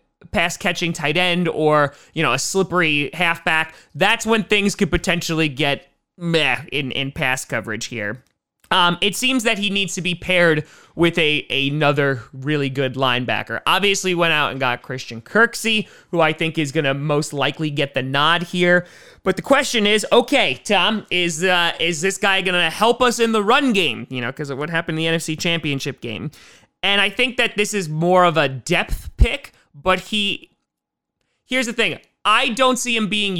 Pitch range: 140-190 Hz